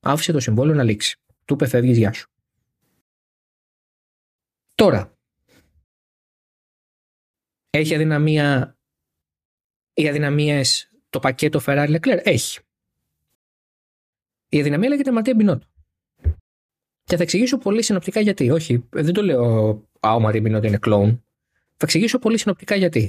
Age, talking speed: 20-39, 115 wpm